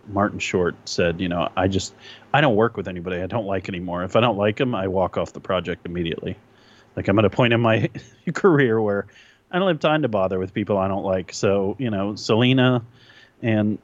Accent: American